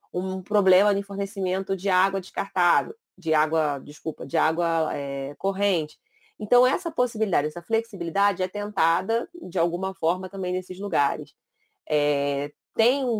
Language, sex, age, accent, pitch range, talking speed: Portuguese, female, 20-39, Brazilian, 160-200 Hz, 125 wpm